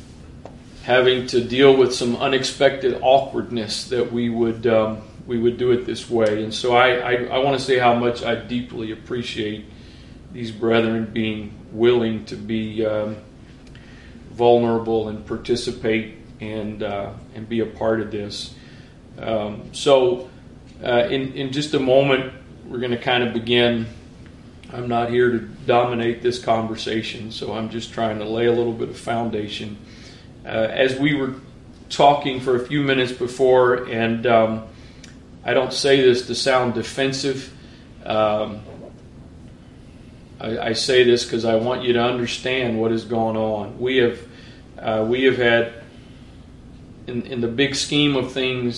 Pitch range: 110-125 Hz